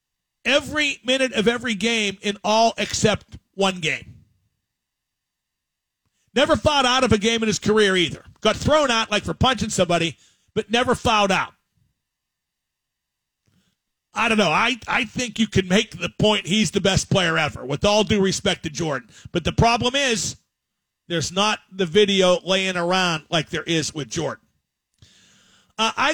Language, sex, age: English, male, 50-69